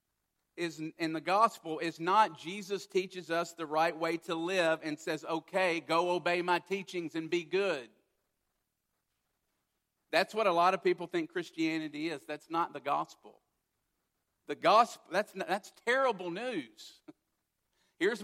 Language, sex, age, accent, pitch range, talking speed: English, male, 50-69, American, 165-205 Hz, 145 wpm